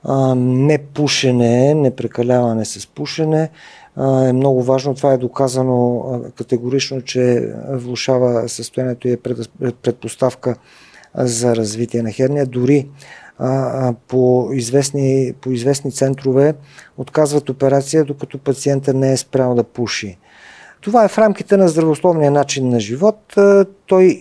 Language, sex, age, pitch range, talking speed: Bulgarian, male, 50-69, 125-165 Hz, 115 wpm